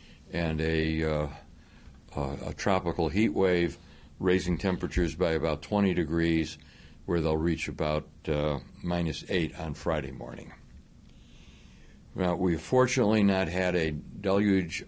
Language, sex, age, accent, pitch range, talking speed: English, male, 60-79, American, 75-95 Hz, 120 wpm